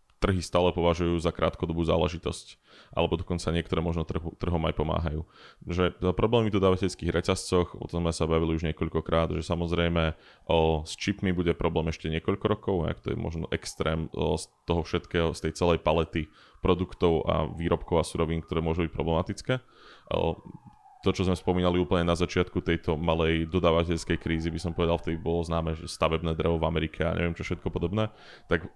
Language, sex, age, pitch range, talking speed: Slovak, male, 20-39, 80-90 Hz, 185 wpm